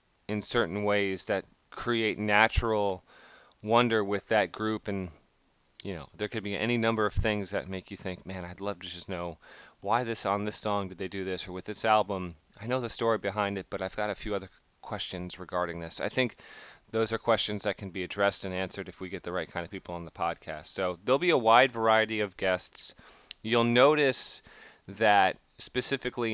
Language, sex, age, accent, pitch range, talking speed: English, male, 30-49, American, 95-115 Hz, 210 wpm